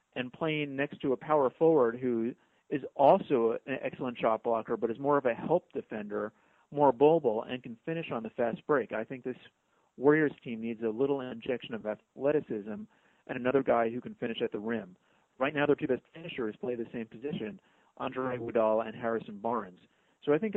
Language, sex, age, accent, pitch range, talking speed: English, male, 40-59, American, 115-140 Hz, 200 wpm